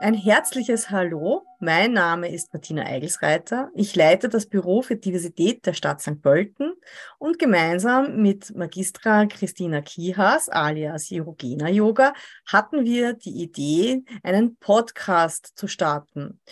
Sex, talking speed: female, 125 wpm